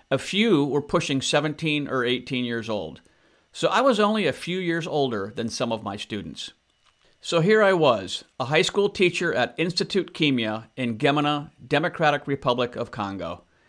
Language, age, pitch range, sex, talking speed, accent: English, 50-69, 120-165 Hz, male, 170 wpm, American